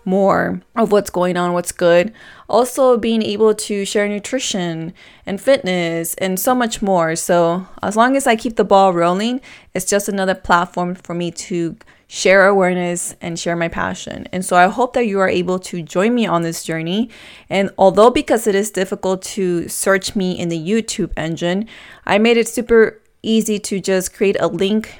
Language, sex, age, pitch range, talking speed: English, female, 20-39, 175-220 Hz, 185 wpm